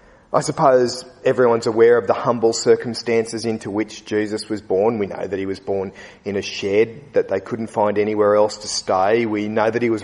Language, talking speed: English, 210 wpm